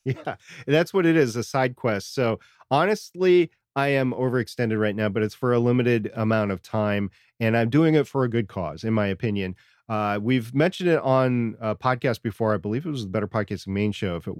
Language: English